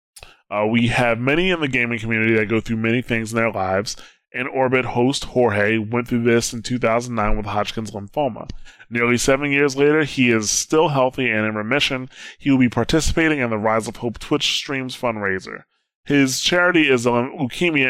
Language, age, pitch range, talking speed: English, 20-39, 110-130 Hz, 190 wpm